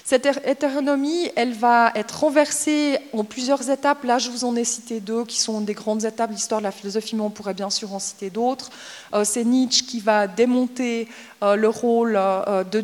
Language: French